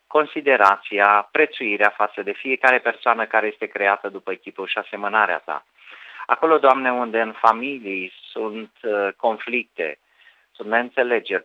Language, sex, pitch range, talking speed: Romanian, male, 105-130 Hz, 120 wpm